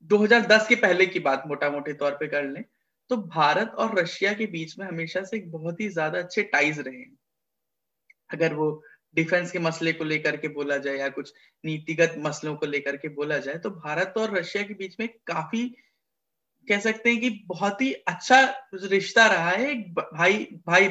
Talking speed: 190 wpm